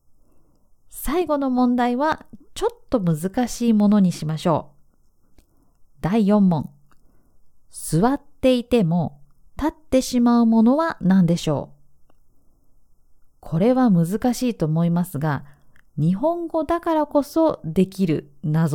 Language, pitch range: Japanese, 155-245 Hz